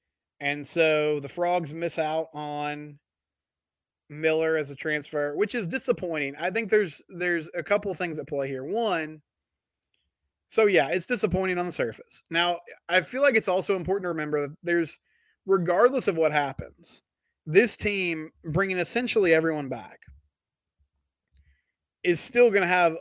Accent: American